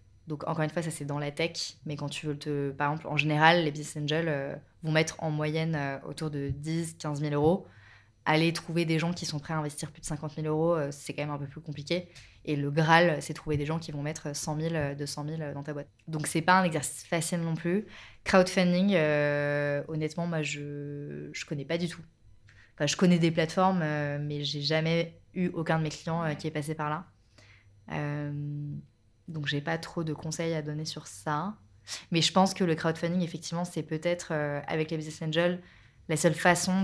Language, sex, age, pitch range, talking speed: French, female, 20-39, 145-170 Hz, 220 wpm